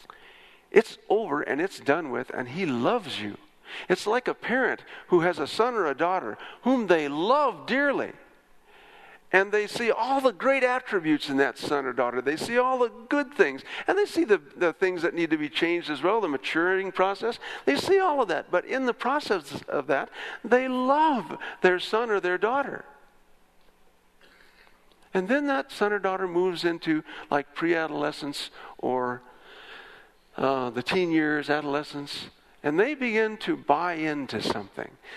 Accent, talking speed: American, 170 wpm